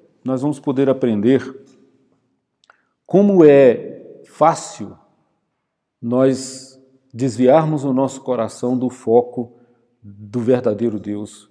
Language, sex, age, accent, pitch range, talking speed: Portuguese, male, 40-59, Brazilian, 115-135 Hz, 90 wpm